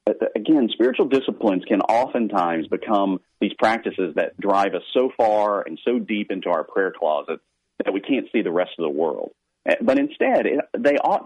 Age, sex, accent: 40-59, male, American